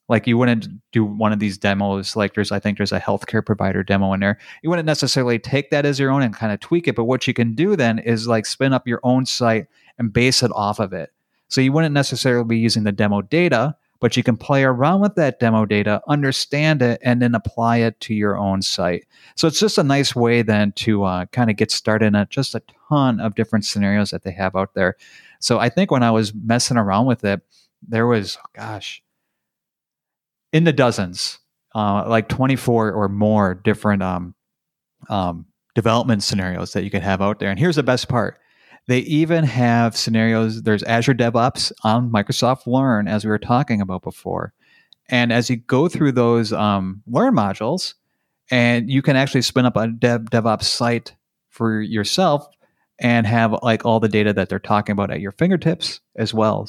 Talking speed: 205 wpm